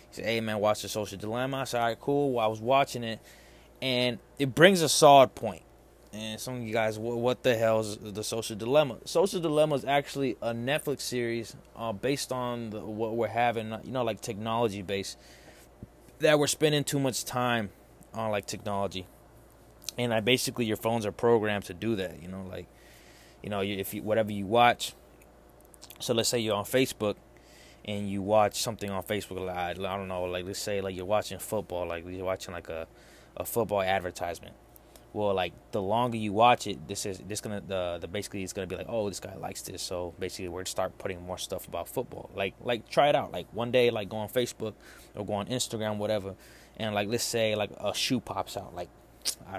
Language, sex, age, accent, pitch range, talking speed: English, male, 20-39, American, 95-120 Hz, 210 wpm